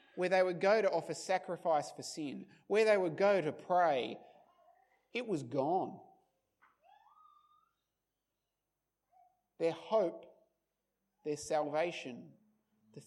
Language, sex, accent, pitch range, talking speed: English, male, Australian, 155-225 Hz, 105 wpm